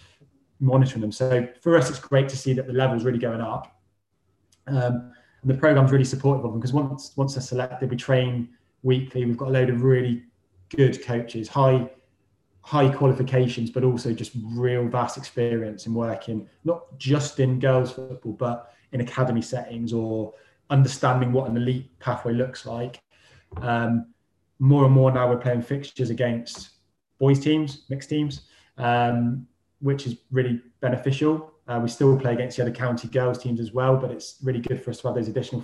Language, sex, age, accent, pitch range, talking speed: English, male, 20-39, British, 115-130 Hz, 180 wpm